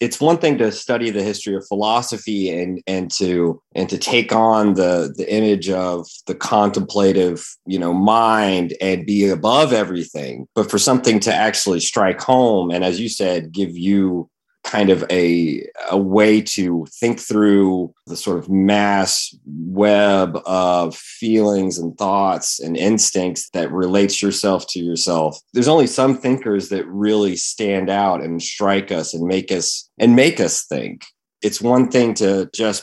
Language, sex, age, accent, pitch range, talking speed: English, male, 30-49, American, 90-110 Hz, 165 wpm